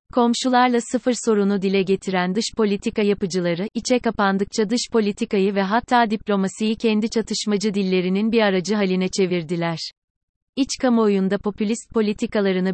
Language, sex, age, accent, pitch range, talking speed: Turkish, female, 30-49, native, 190-220 Hz, 120 wpm